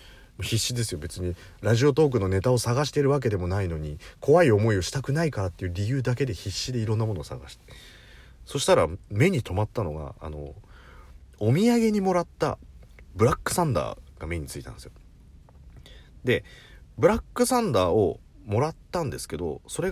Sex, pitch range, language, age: male, 85-140 Hz, Japanese, 40-59